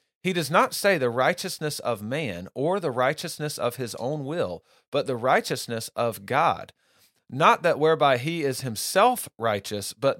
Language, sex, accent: English, male, American